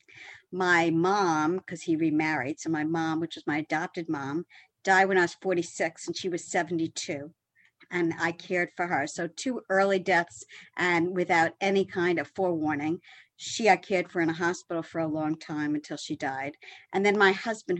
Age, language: 50-69, English